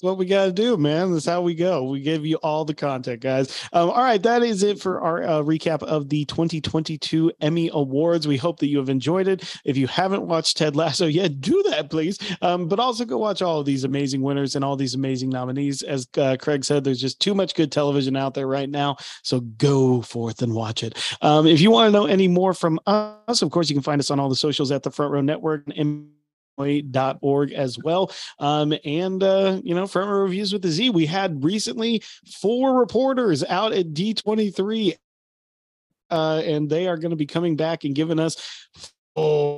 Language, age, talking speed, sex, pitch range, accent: English, 30-49, 220 wpm, male, 140-175 Hz, American